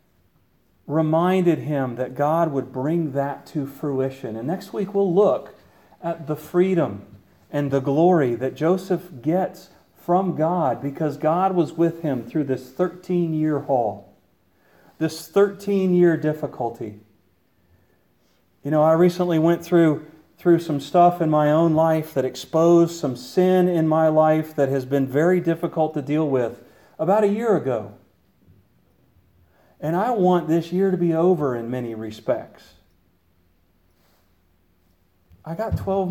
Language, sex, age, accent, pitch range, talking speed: English, male, 40-59, American, 120-170 Hz, 140 wpm